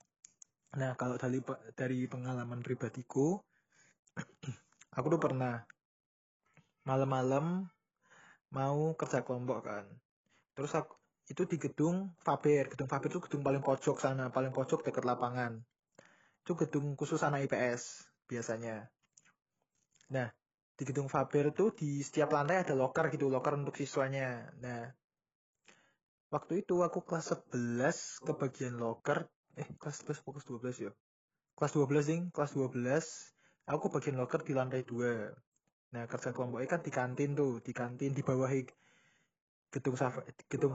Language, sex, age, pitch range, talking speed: Indonesian, male, 20-39, 130-155 Hz, 130 wpm